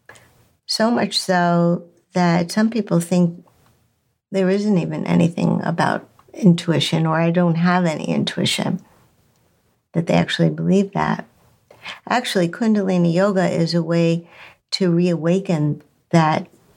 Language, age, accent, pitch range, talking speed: English, 50-69, American, 170-195 Hz, 120 wpm